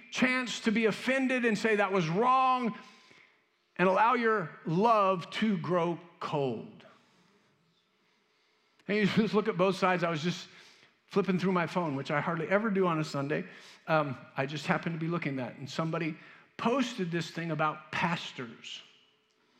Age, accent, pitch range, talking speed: 50-69, American, 165-215 Hz, 165 wpm